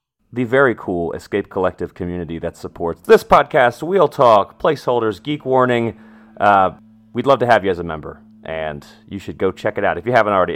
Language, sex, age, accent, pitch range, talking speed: English, male, 30-49, American, 85-110 Hz, 200 wpm